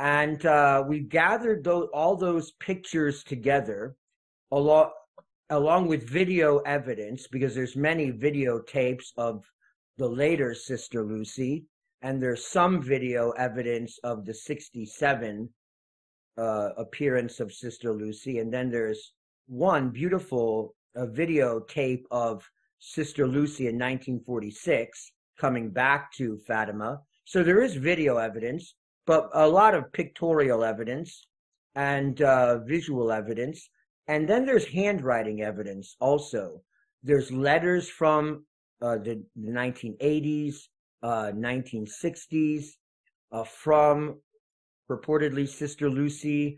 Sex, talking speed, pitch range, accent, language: male, 115 wpm, 120-150 Hz, American, English